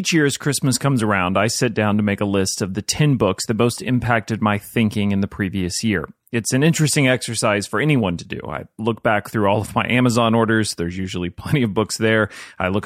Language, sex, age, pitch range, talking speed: English, male, 30-49, 105-130 Hz, 240 wpm